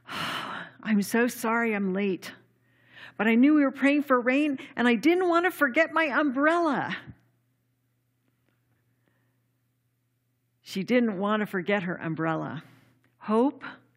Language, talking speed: English, 125 wpm